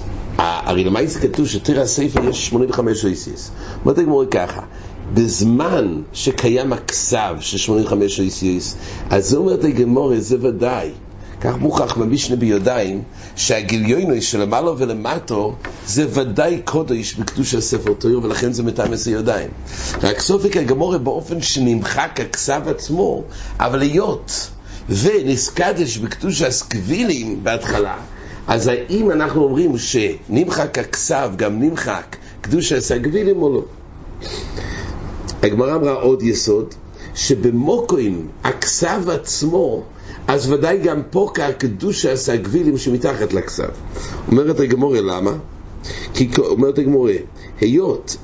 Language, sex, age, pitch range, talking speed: English, male, 60-79, 100-150 Hz, 70 wpm